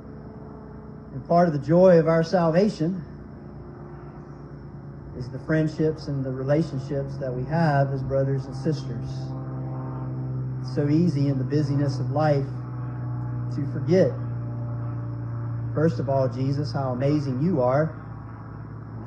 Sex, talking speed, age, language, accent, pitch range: male, 125 wpm, 40-59, English, American, 125-155 Hz